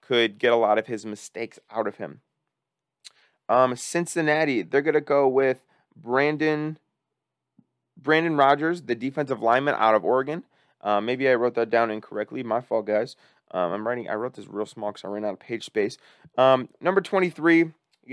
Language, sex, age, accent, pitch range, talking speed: English, male, 20-39, American, 115-140 Hz, 175 wpm